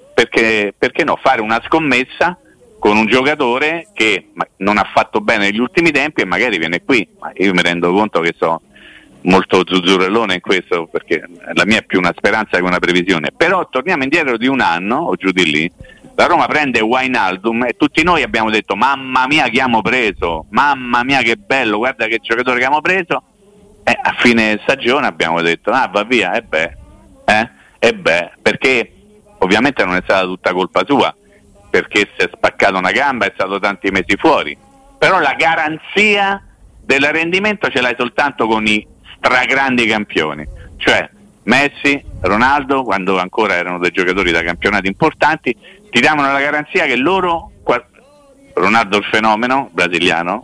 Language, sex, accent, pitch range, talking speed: Italian, male, native, 100-150 Hz, 165 wpm